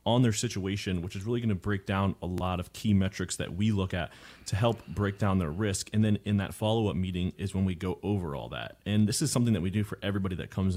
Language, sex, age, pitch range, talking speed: English, male, 30-49, 90-110 Hz, 275 wpm